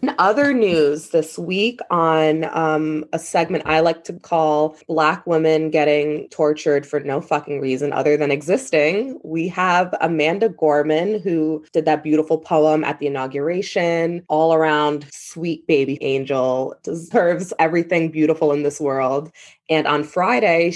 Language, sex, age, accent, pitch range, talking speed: English, female, 20-39, American, 150-170 Hz, 145 wpm